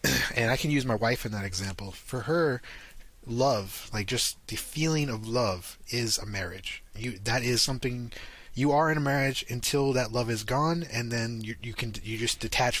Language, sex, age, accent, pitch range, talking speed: English, male, 20-39, American, 105-125 Hz, 200 wpm